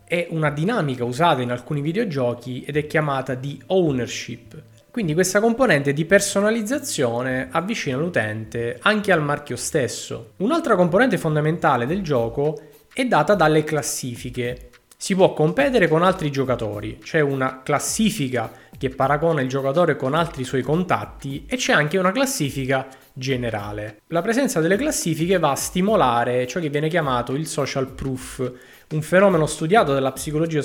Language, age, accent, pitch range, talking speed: Italian, 20-39, native, 130-180 Hz, 145 wpm